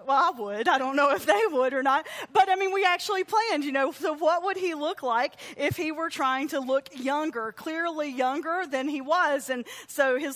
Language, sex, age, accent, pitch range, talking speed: English, female, 40-59, American, 255-360 Hz, 230 wpm